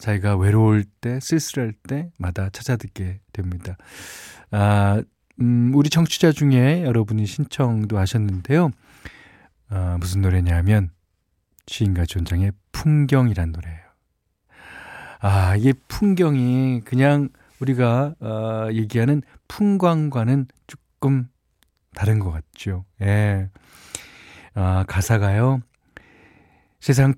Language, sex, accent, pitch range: Korean, male, native, 95-135 Hz